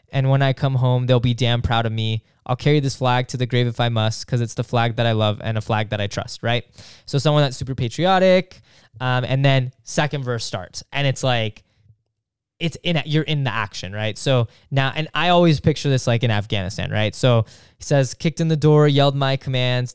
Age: 10-29